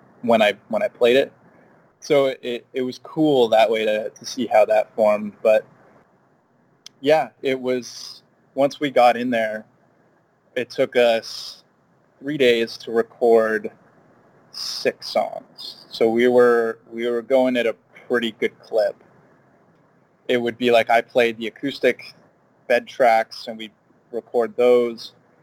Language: English